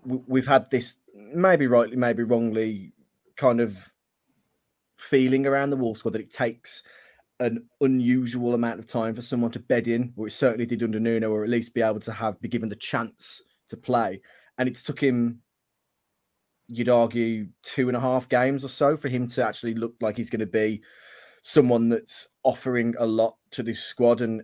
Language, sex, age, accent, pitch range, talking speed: English, male, 20-39, British, 115-130 Hz, 190 wpm